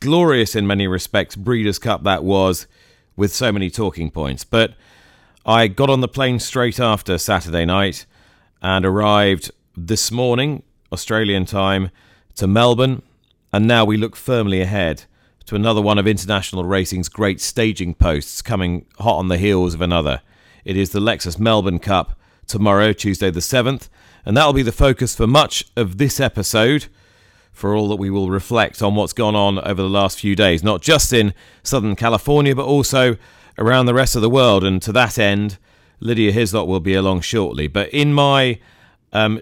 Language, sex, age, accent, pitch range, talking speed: English, male, 40-59, British, 95-120 Hz, 175 wpm